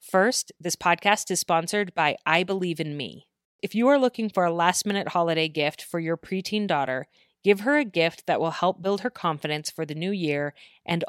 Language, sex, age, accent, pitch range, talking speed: English, female, 30-49, American, 160-200 Hz, 210 wpm